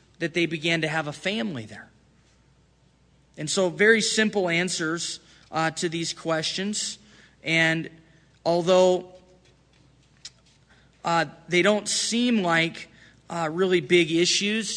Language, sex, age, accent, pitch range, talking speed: English, male, 20-39, American, 155-190 Hz, 115 wpm